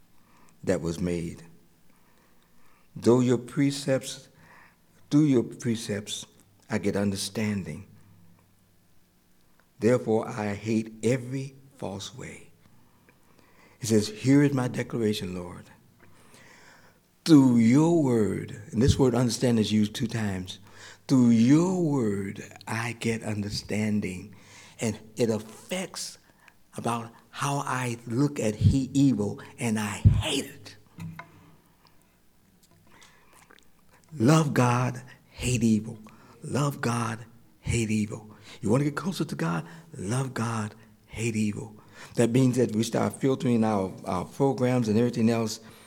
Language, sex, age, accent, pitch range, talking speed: English, male, 60-79, American, 105-125 Hz, 115 wpm